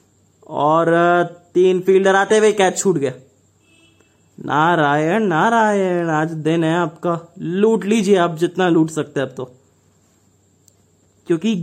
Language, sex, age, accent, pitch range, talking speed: English, male, 20-39, Indian, 140-185 Hz, 135 wpm